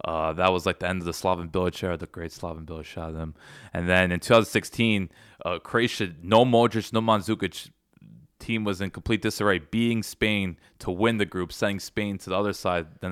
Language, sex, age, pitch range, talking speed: English, male, 20-39, 85-105 Hz, 205 wpm